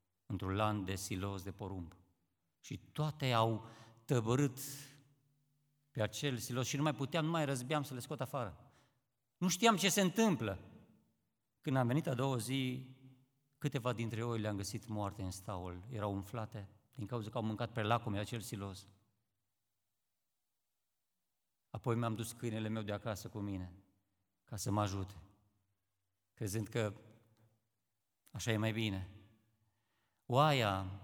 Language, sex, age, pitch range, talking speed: Romanian, male, 50-69, 105-150 Hz, 145 wpm